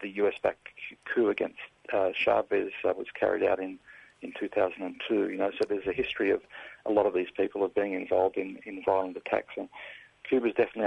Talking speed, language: 195 wpm, English